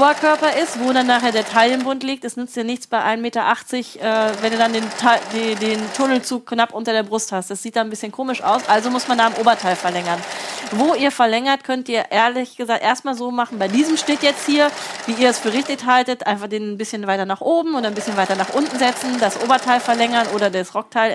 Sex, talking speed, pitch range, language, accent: female, 245 wpm, 225-265 Hz, German, German